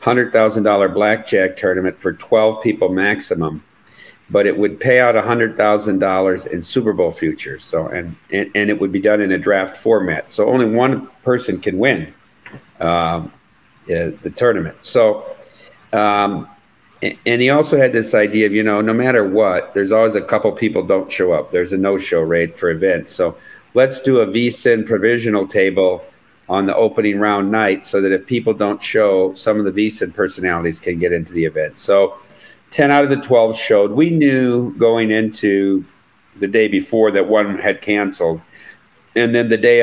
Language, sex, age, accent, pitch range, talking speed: English, male, 50-69, American, 95-115 Hz, 180 wpm